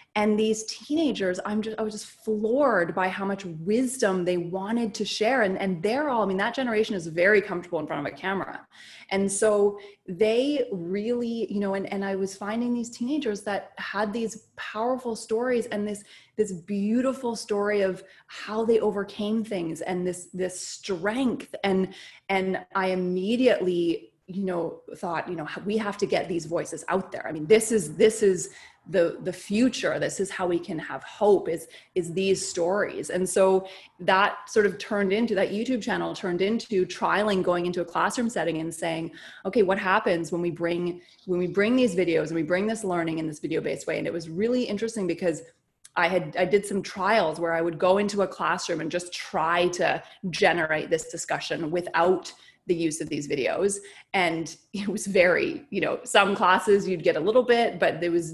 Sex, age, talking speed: female, 20-39, 195 wpm